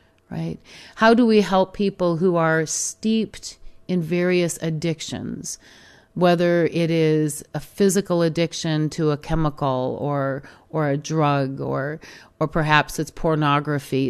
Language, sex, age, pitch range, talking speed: English, female, 40-59, 140-170 Hz, 130 wpm